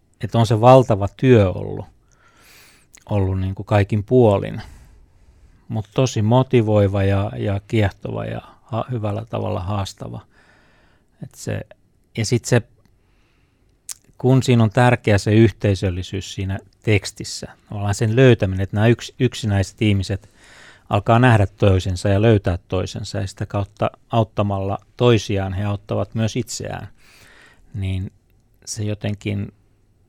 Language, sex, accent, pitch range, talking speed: Finnish, male, native, 100-115 Hz, 120 wpm